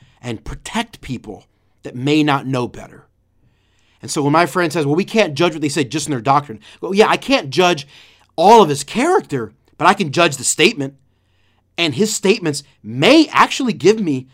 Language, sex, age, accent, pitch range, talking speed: English, male, 30-49, American, 130-175 Hz, 195 wpm